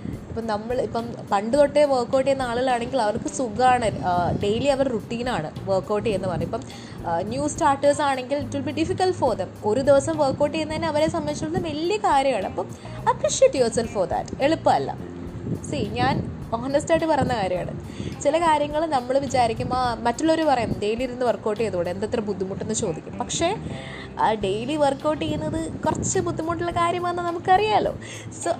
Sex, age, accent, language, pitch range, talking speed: female, 20-39, native, Malayalam, 220-310 Hz, 150 wpm